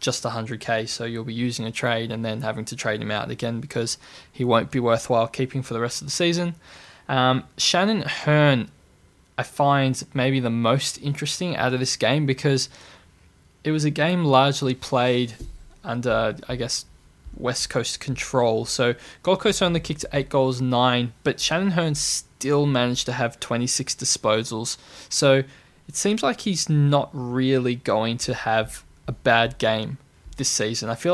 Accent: Australian